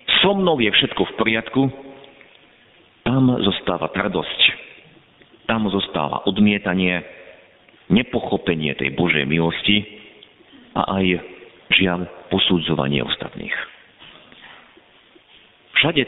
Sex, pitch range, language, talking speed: male, 80-110 Hz, Slovak, 80 wpm